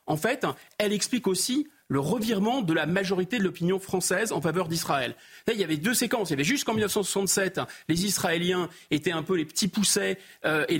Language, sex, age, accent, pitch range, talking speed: French, male, 30-49, French, 155-210 Hz, 200 wpm